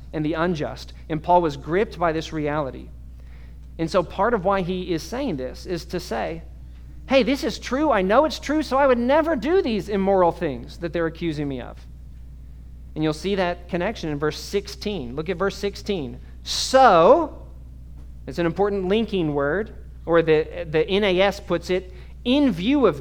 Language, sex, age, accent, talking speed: English, male, 40-59, American, 185 wpm